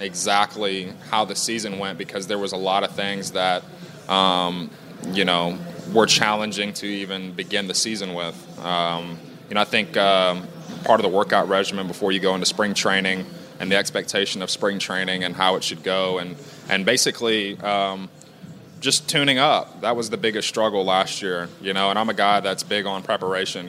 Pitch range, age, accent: 95-105 Hz, 20-39, American